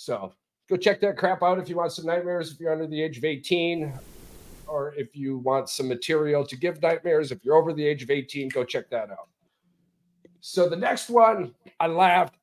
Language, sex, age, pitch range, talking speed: English, male, 40-59, 145-205 Hz, 210 wpm